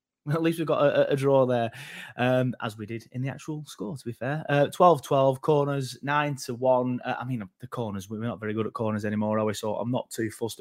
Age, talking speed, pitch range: 20-39, 245 wpm, 120-155 Hz